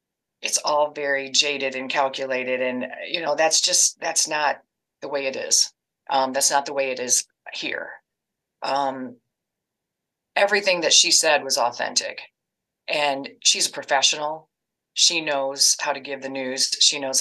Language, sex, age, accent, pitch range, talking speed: English, female, 30-49, American, 135-180 Hz, 155 wpm